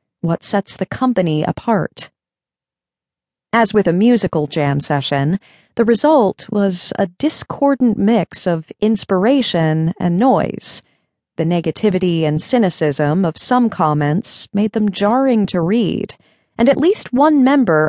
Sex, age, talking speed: female, 40-59, 130 wpm